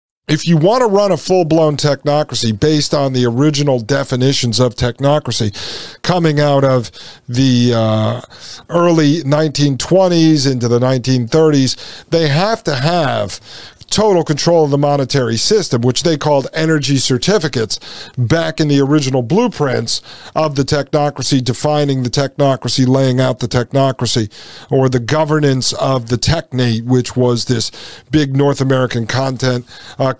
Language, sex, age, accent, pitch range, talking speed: English, male, 50-69, American, 130-155 Hz, 135 wpm